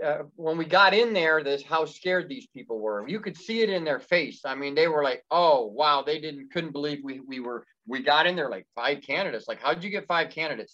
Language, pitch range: English, 145-185 Hz